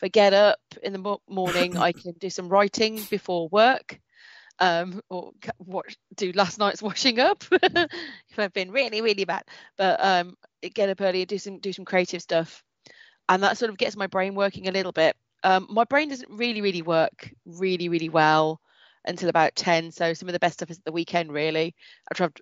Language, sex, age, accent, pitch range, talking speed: English, female, 30-49, British, 175-220 Hz, 200 wpm